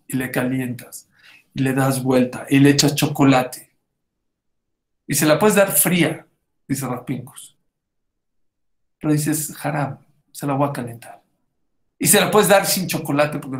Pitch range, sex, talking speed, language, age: 130-150 Hz, male, 155 wpm, English, 50-69